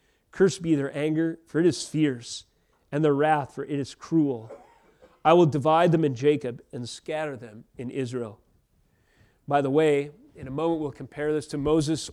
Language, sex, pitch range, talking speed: English, male, 140-180 Hz, 185 wpm